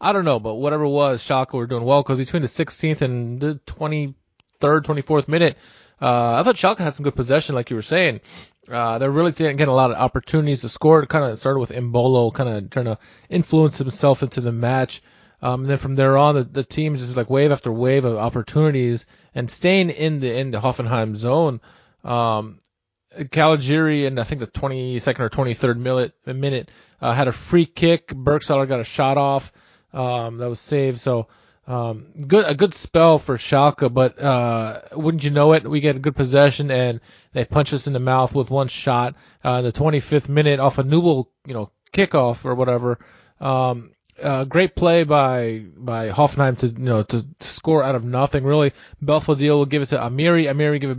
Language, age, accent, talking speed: English, 20-39, American, 205 wpm